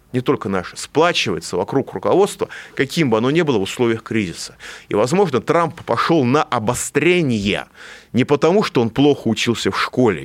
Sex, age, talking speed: male, 30-49, 165 wpm